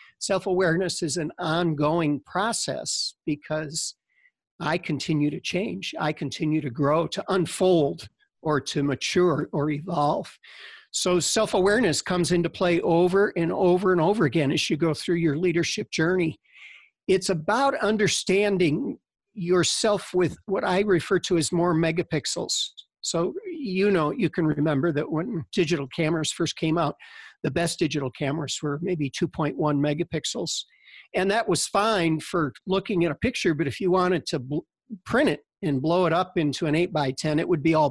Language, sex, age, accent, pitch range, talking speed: English, male, 50-69, American, 155-180 Hz, 165 wpm